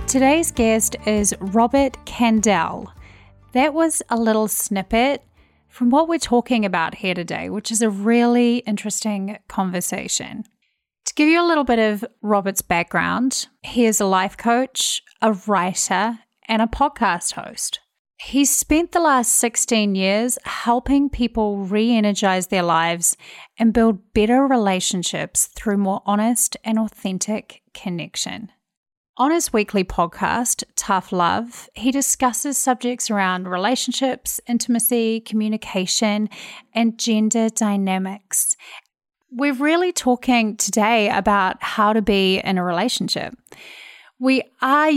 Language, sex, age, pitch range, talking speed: English, female, 30-49, 200-250 Hz, 125 wpm